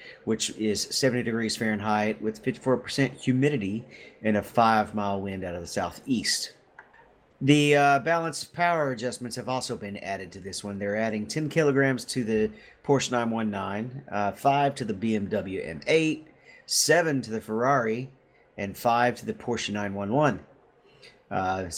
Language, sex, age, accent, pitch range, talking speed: English, male, 50-69, American, 100-130 Hz, 145 wpm